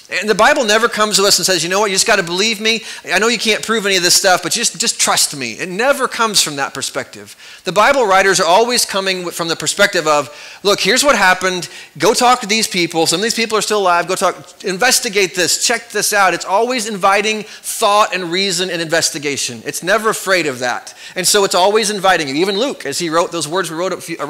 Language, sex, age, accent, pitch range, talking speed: English, male, 30-49, American, 155-205 Hz, 250 wpm